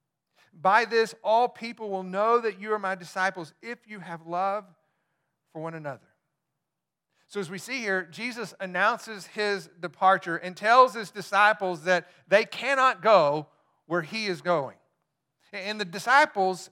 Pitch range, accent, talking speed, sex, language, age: 170-215 Hz, American, 150 wpm, male, English, 50-69